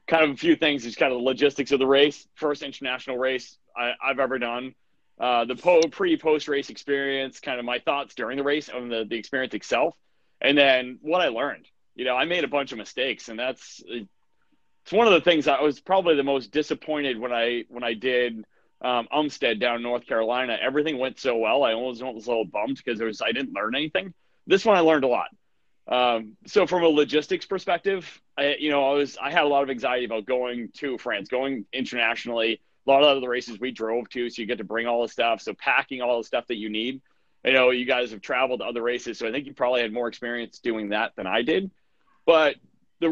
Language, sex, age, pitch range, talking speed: English, male, 30-49, 120-155 Hz, 230 wpm